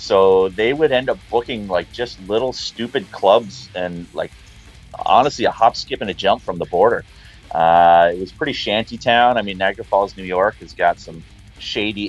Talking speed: 195 wpm